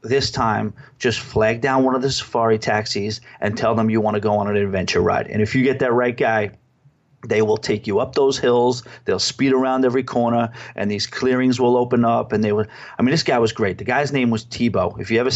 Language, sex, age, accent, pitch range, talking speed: English, male, 30-49, American, 110-135 Hz, 245 wpm